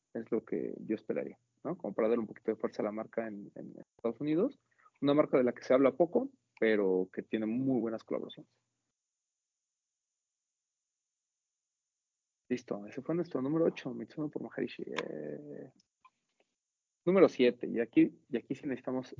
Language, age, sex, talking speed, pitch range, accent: Spanish, 30-49, male, 165 wpm, 110-135 Hz, Mexican